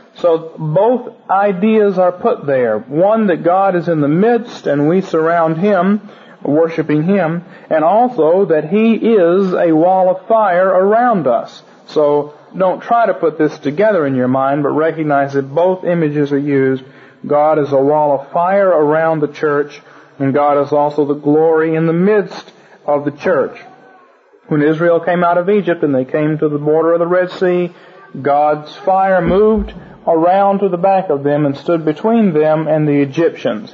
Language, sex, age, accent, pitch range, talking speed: English, male, 40-59, American, 140-180 Hz, 180 wpm